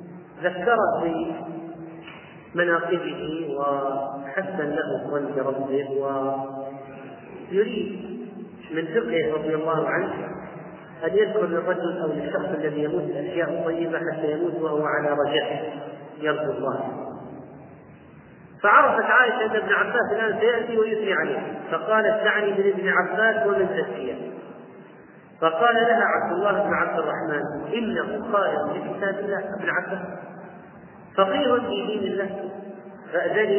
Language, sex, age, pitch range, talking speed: Arabic, male, 40-59, 160-205 Hz, 105 wpm